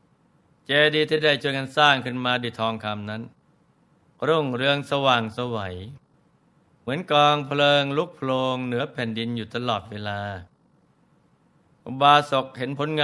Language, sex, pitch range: Thai, male, 115-140 Hz